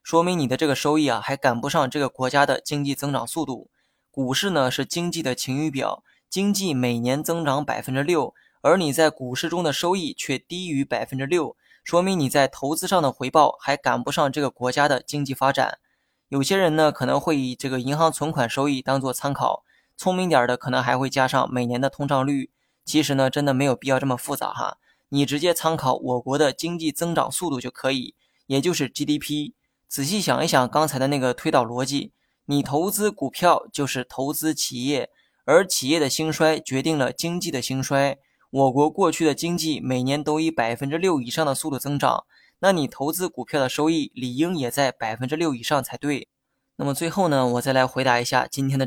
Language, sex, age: Chinese, male, 20-39